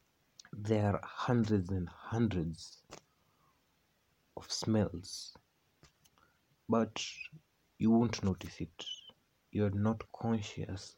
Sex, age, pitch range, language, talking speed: male, 30-49, 95-115 Hz, Swahili, 85 wpm